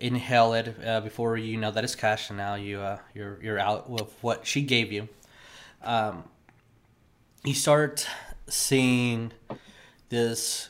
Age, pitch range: 20-39, 100-125 Hz